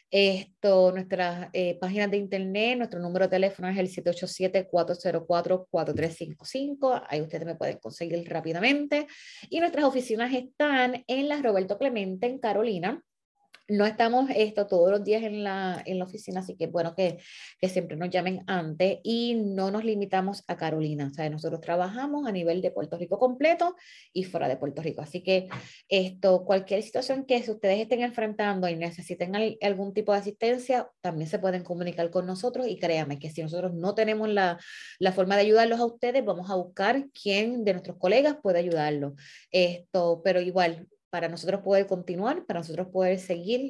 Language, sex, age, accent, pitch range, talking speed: Spanish, female, 20-39, American, 175-220 Hz, 175 wpm